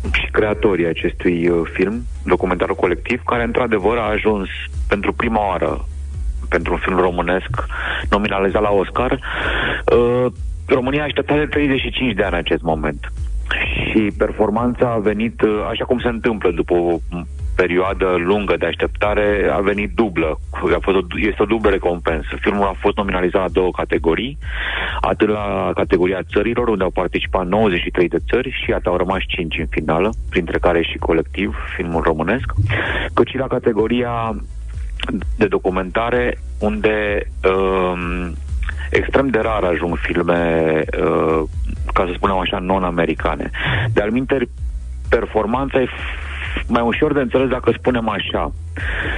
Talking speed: 140 wpm